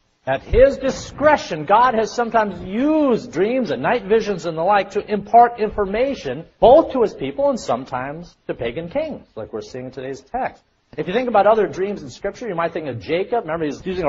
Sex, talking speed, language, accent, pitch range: male, 205 wpm, English, American, 140-215 Hz